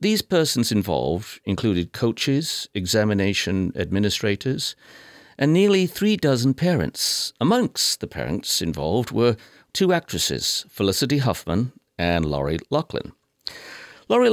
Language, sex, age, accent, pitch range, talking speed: English, male, 50-69, British, 100-145 Hz, 105 wpm